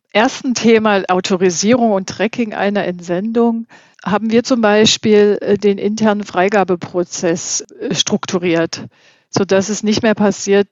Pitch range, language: 185-215 Hz, English